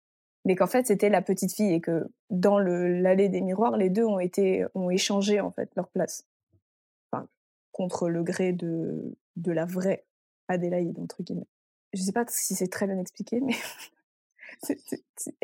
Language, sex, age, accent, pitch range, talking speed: French, female, 20-39, French, 190-230 Hz, 180 wpm